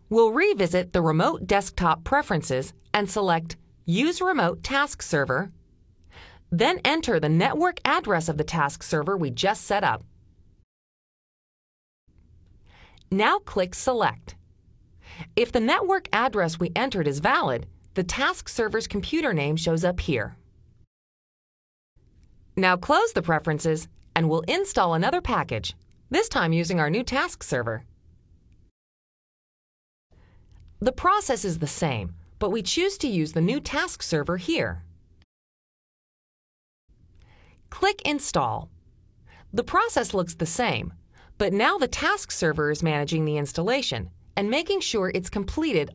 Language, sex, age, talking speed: Hungarian, female, 40-59, 125 wpm